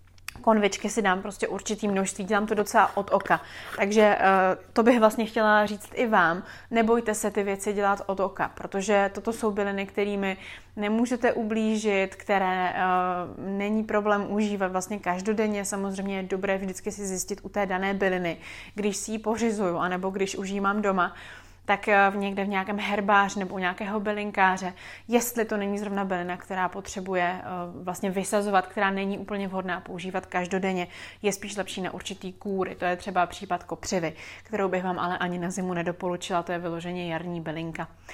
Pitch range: 185-215 Hz